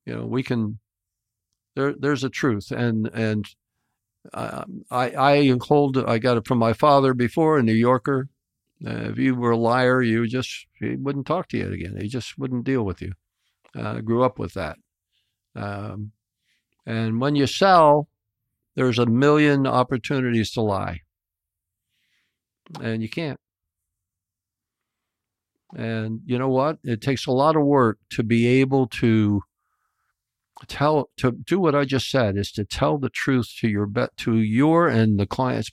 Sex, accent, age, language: male, American, 60-79, English